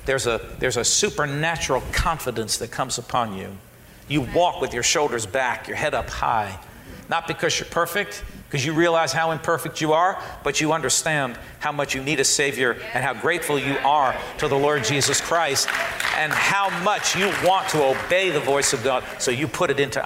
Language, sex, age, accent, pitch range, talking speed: English, male, 50-69, American, 140-195 Hz, 205 wpm